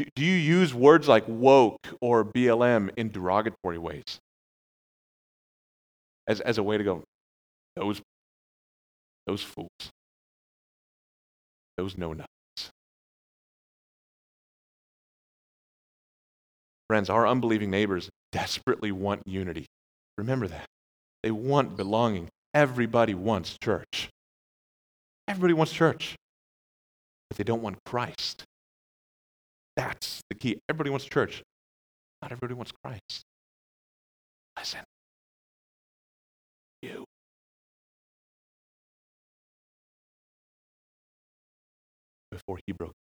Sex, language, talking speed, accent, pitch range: male, English, 85 wpm, American, 85-120 Hz